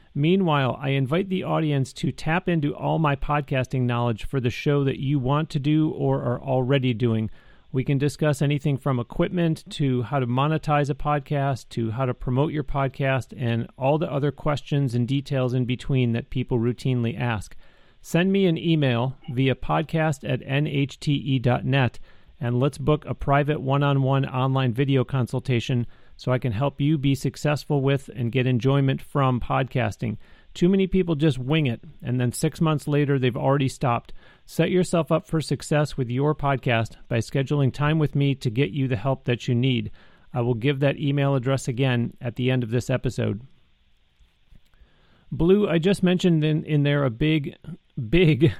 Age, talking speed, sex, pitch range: 40-59, 175 wpm, male, 125-150 Hz